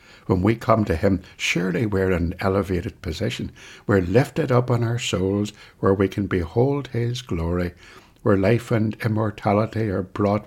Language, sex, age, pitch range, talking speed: English, male, 60-79, 90-115 Hz, 165 wpm